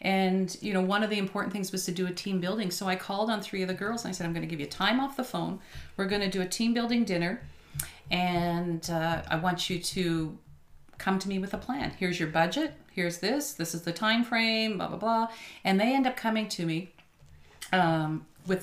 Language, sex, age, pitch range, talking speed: English, female, 40-59, 170-195 Hz, 245 wpm